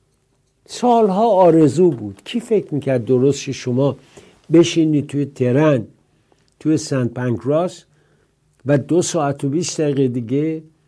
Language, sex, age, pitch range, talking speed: English, male, 60-79, 125-170 Hz, 115 wpm